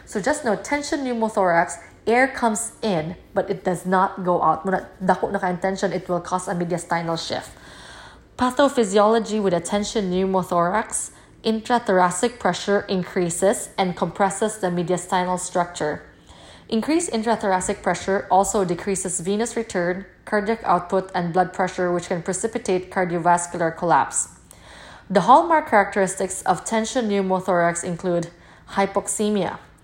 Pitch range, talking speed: 180-215 Hz, 120 wpm